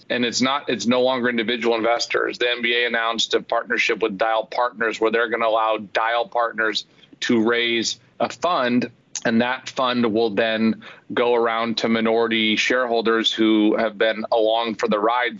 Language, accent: English, American